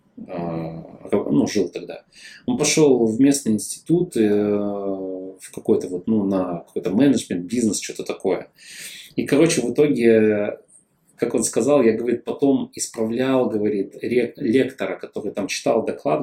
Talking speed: 130 wpm